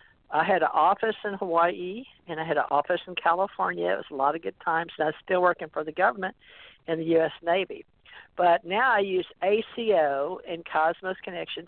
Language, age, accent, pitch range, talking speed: English, 60-79, American, 155-185 Hz, 205 wpm